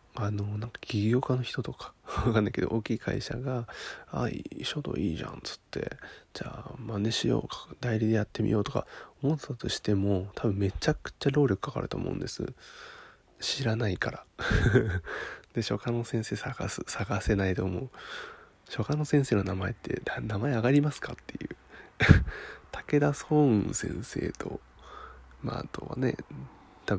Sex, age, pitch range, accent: male, 20-39, 105-130 Hz, native